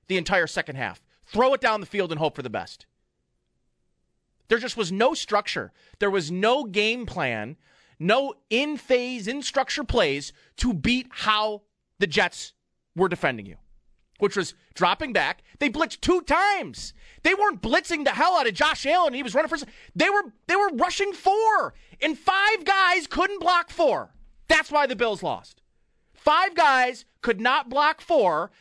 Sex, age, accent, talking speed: male, 30-49, American, 170 wpm